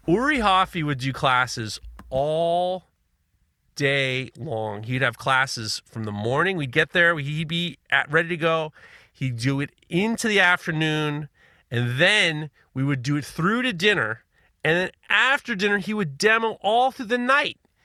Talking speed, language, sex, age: 165 wpm, English, male, 30-49